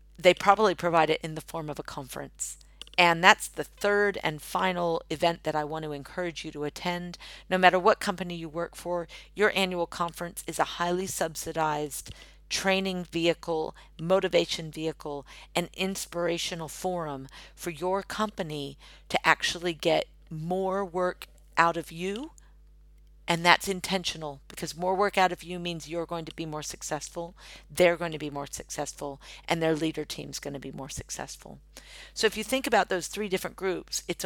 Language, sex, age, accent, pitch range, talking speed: English, female, 50-69, American, 155-190 Hz, 170 wpm